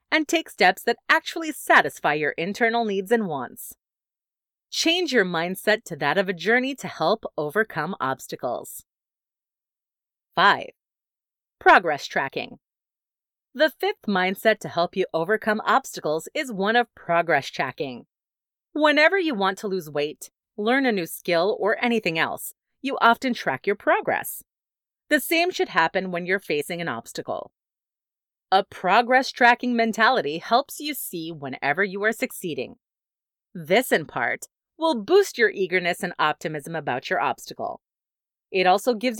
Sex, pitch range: female, 185-280 Hz